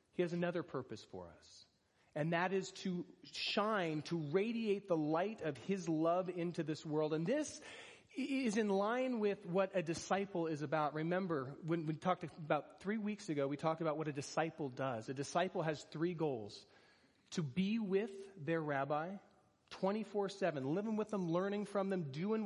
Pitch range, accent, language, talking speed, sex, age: 155-200 Hz, American, English, 175 wpm, male, 30-49